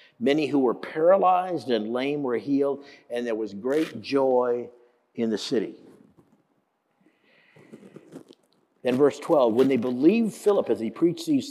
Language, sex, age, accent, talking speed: English, male, 50-69, American, 140 wpm